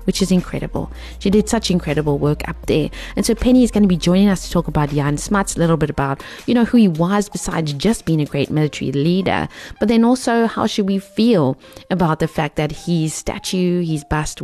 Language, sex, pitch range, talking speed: English, female, 155-195 Hz, 235 wpm